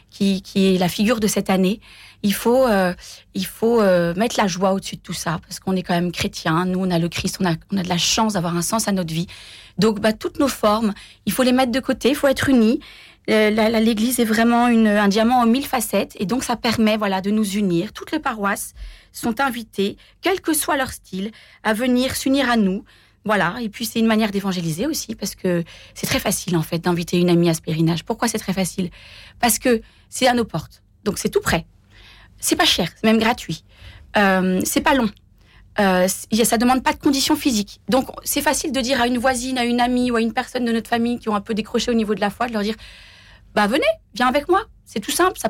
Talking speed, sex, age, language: 250 wpm, female, 30-49, French